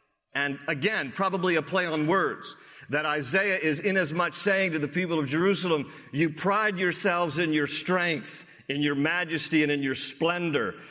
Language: English